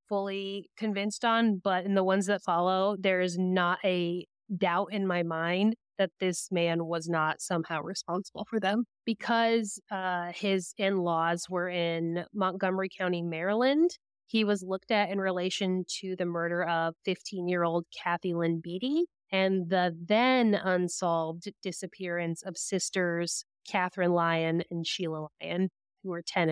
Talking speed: 150 wpm